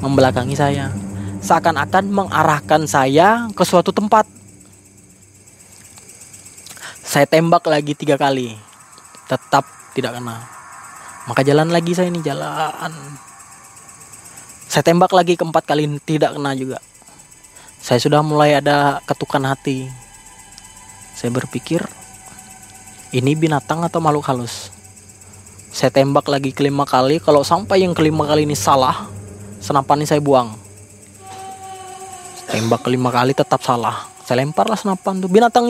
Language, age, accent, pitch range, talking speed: Indonesian, 20-39, native, 110-170 Hz, 115 wpm